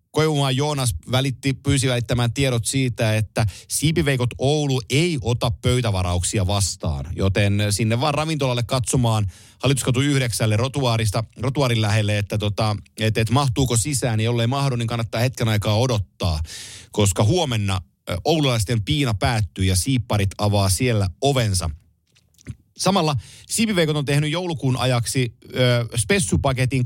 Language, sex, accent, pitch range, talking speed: Finnish, male, native, 105-135 Hz, 115 wpm